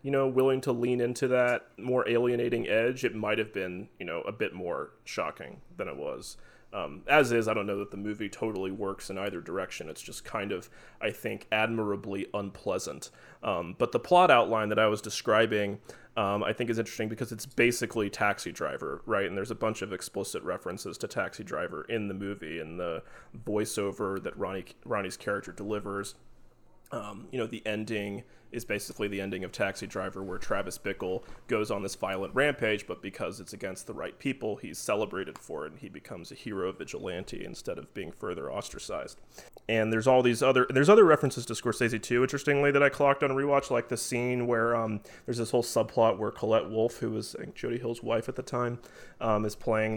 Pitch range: 105-125 Hz